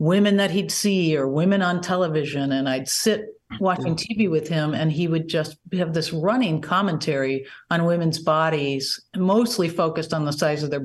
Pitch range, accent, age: 150-210 Hz, American, 50-69